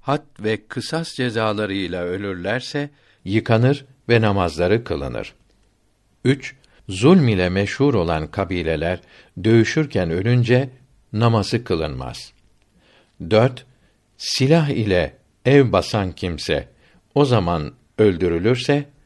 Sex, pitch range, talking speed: male, 95-125 Hz, 90 wpm